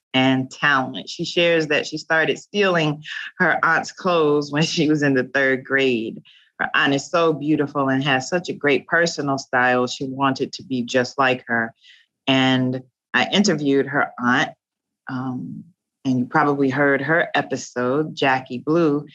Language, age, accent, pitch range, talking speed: English, 30-49, American, 130-170 Hz, 160 wpm